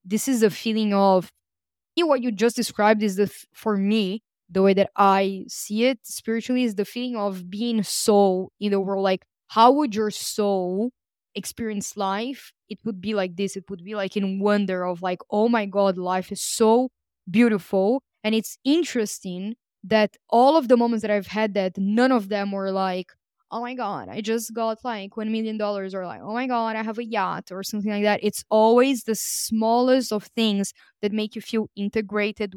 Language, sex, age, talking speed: English, female, 20-39, 195 wpm